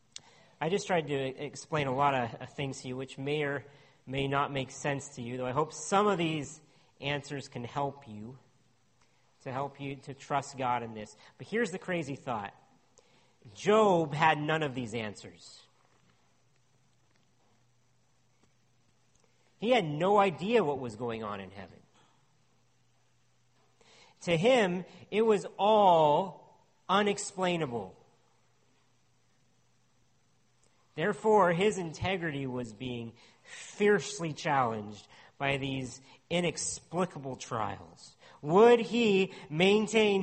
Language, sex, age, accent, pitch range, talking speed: English, male, 40-59, American, 125-185 Hz, 120 wpm